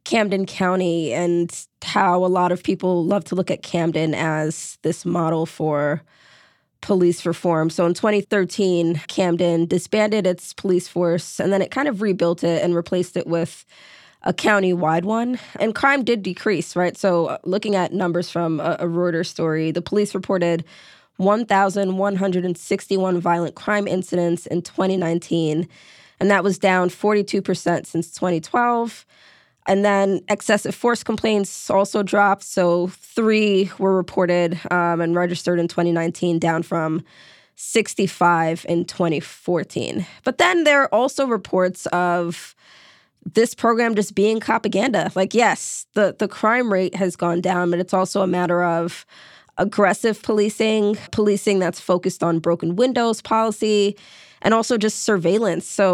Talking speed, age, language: 145 wpm, 20-39, English